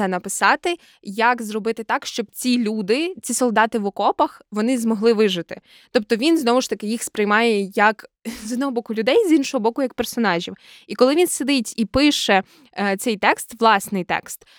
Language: Ukrainian